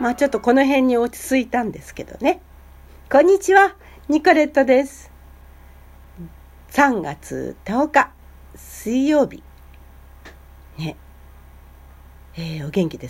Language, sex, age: Japanese, female, 60-79